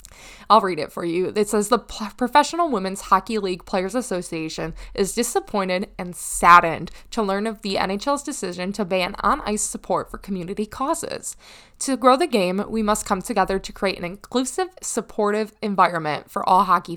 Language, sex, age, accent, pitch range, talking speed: English, female, 20-39, American, 190-245 Hz, 170 wpm